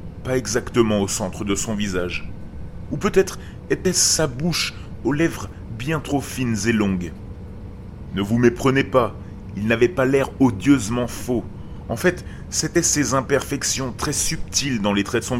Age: 30-49